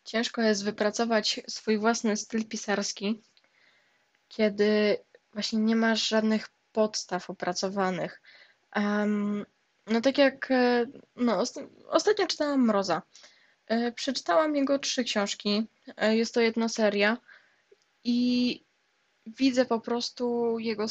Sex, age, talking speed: female, 10-29, 95 wpm